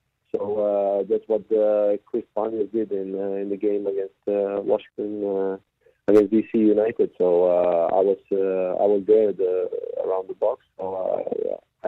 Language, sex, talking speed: English, male, 170 wpm